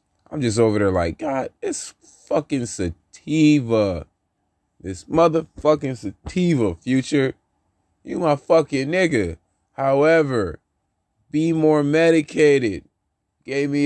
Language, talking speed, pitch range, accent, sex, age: English, 100 wpm, 95-120 Hz, American, male, 20-39